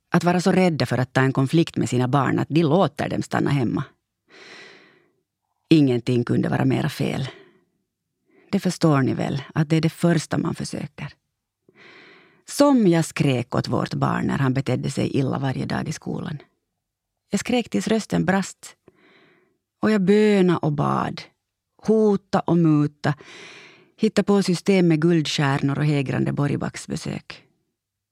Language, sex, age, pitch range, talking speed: Swedish, female, 30-49, 135-200 Hz, 150 wpm